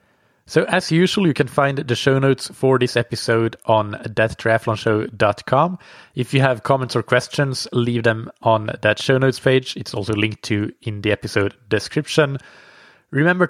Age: 30-49